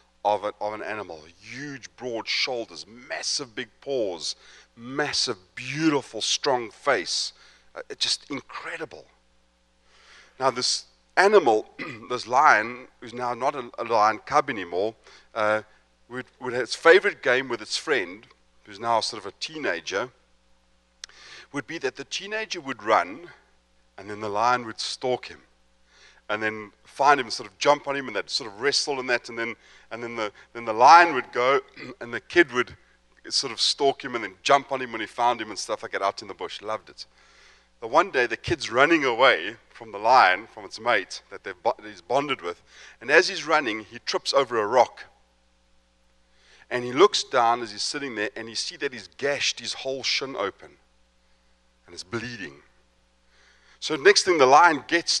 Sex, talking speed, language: male, 185 wpm, English